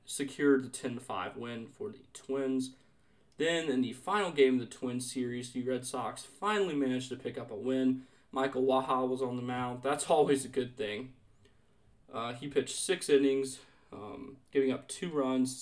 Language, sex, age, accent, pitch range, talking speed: English, male, 20-39, American, 125-140 Hz, 180 wpm